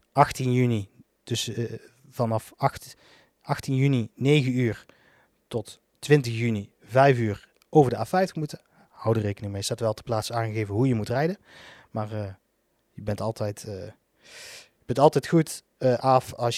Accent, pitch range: Dutch, 115-150 Hz